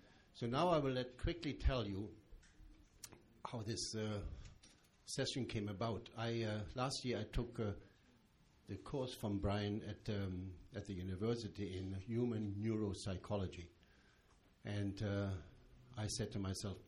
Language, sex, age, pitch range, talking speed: English, male, 60-79, 95-115 Hz, 140 wpm